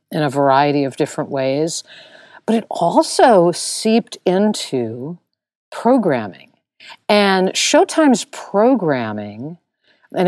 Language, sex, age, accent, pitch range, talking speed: English, female, 50-69, American, 150-225 Hz, 95 wpm